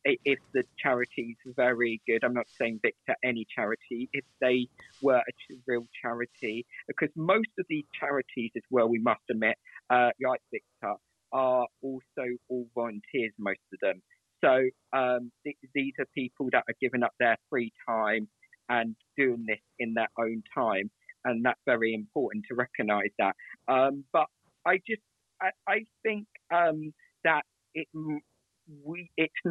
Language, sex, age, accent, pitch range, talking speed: English, male, 40-59, British, 120-145 Hz, 155 wpm